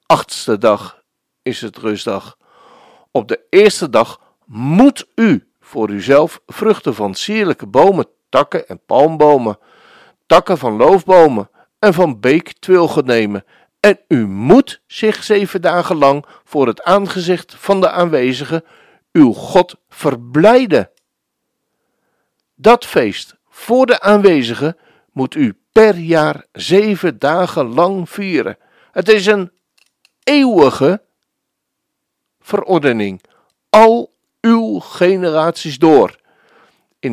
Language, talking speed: Dutch, 105 wpm